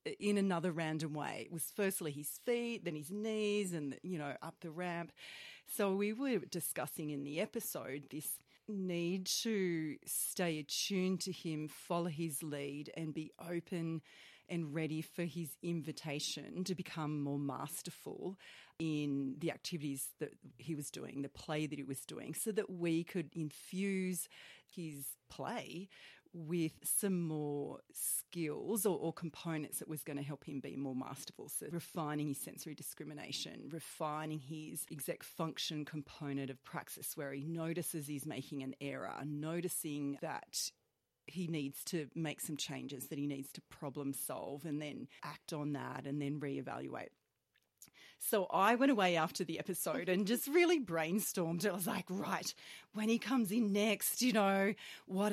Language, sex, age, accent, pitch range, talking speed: English, female, 40-59, Australian, 150-185 Hz, 160 wpm